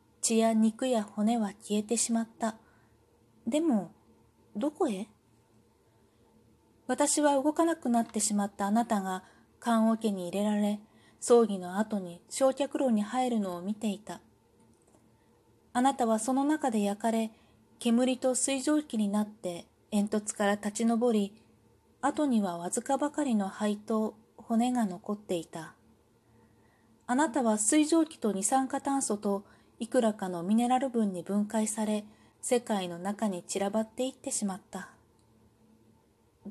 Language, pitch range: Japanese, 180-255 Hz